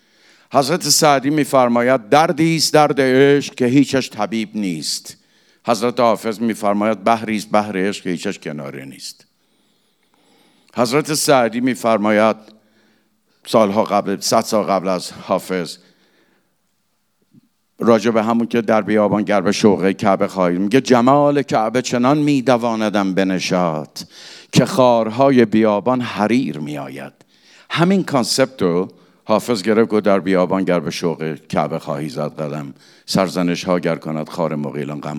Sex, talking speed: male, 125 wpm